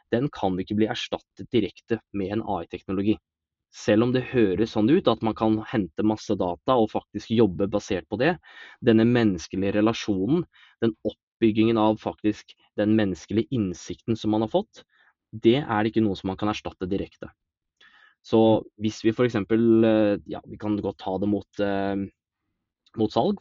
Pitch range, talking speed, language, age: 100-115 Hz, 170 wpm, Swedish, 20-39